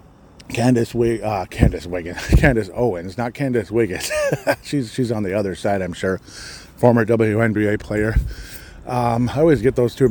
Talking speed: 155 wpm